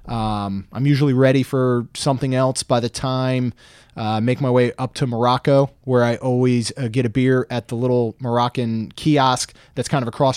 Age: 20-39